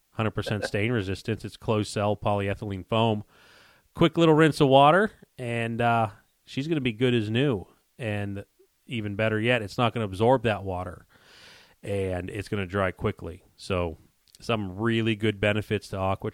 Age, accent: 30-49, American